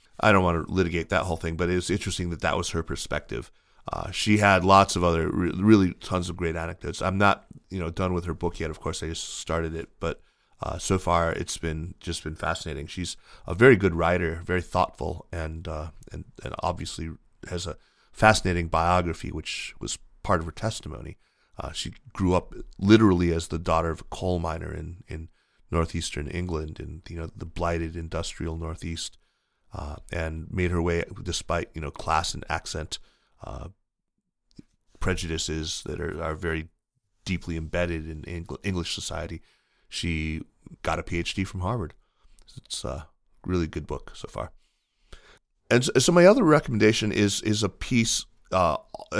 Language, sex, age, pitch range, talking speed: English, male, 30-49, 80-100 Hz, 175 wpm